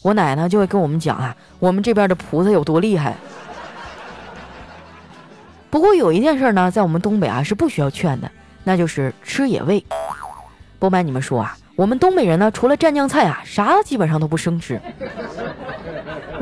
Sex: female